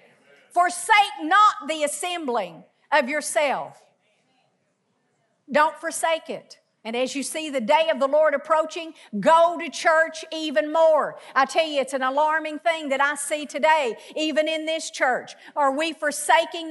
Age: 50-69